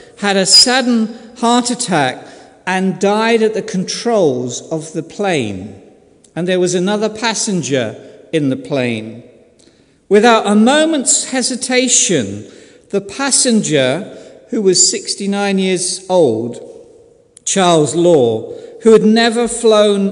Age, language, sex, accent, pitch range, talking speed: 50-69, English, male, British, 170-240 Hz, 115 wpm